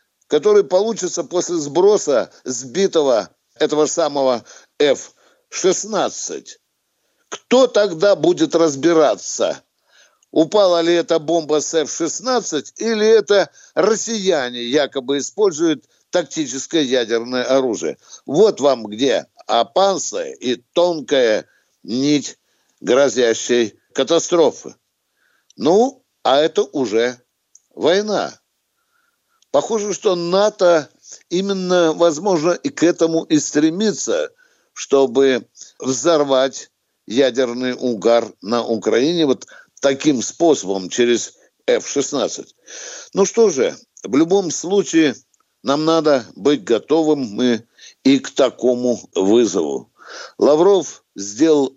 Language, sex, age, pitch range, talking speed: Russian, male, 60-79, 130-210 Hz, 90 wpm